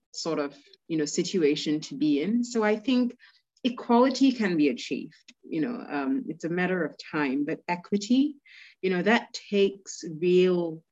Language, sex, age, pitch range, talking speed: English, female, 30-49, 150-220 Hz, 165 wpm